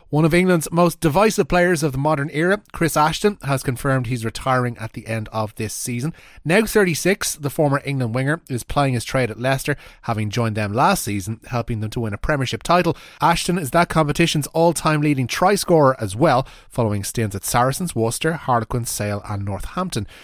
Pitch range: 110-160 Hz